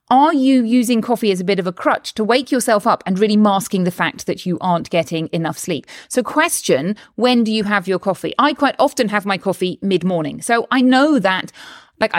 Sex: female